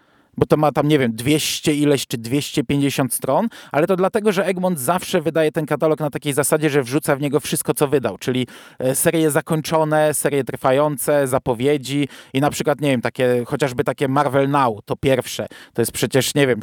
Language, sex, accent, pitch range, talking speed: Polish, male, native, 135-165 Hz, 190 wpm